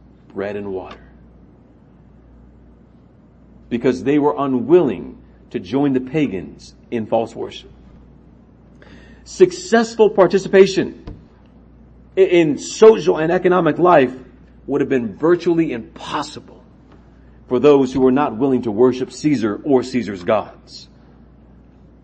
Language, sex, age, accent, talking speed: English, male, 50-69, American, 105 wpm